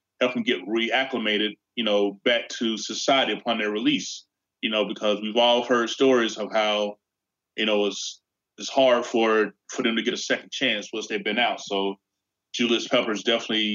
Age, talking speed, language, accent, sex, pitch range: 20-39, 185 wpm, English, American, male, 105-130 Hz